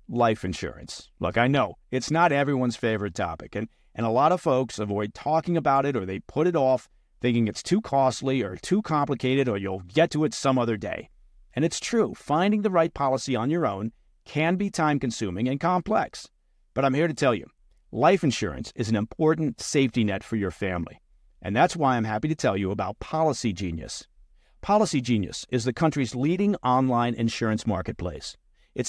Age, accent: 50-69, American